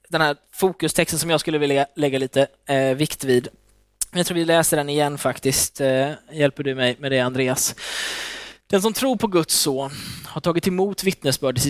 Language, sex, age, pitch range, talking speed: Swedish, male, 20-39, 120-165 Hz, 175 wpm